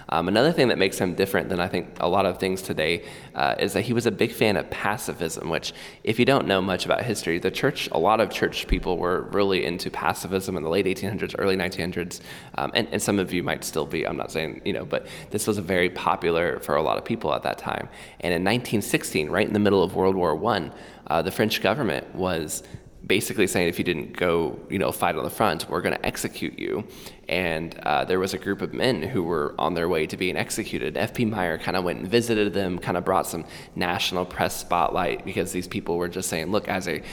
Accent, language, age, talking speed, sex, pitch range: American, English, 20-39, 240 wpm, male, 90-105 Hz